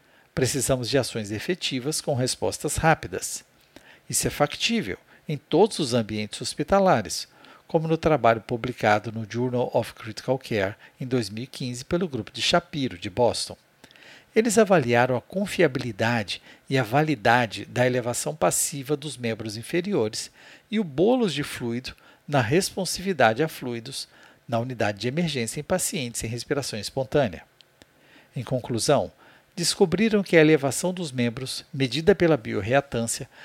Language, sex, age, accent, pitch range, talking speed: Portuguese, male, 50-69, Brazilian, 115-165 Hz, 135 wpm